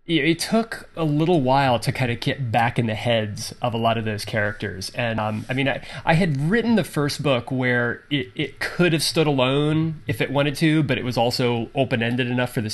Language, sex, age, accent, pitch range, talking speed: English, male, 20-39, American, 110-140 Hz, 230 wpm